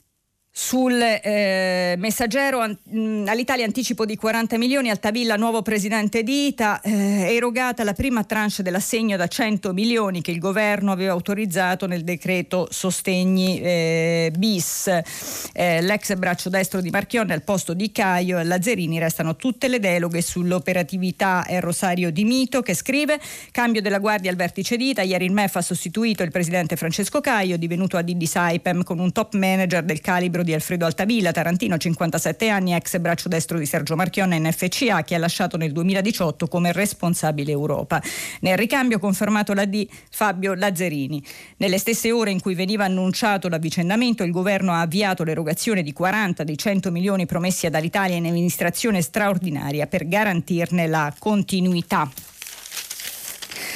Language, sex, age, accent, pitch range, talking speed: Italian, female, 40-59, native, 175-220 Hz, 155 wpm